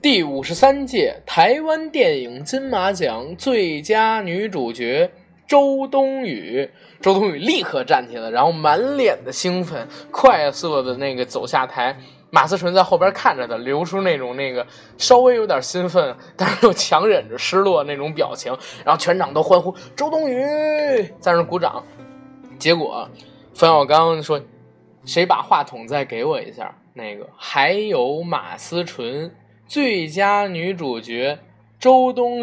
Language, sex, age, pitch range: Chinese, male, 20-39, 150-245 Hz